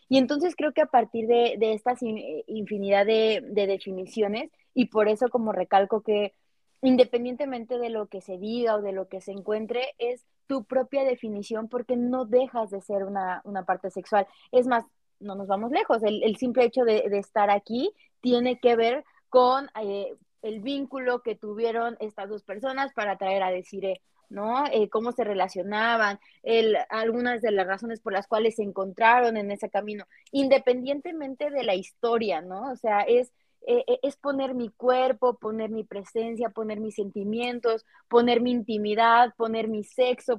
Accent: Mexican